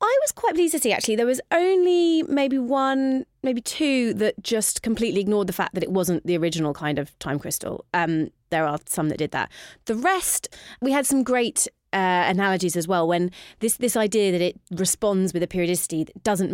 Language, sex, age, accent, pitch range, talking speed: English, female, 30-49, British, 170-225 Hz, 210 wpm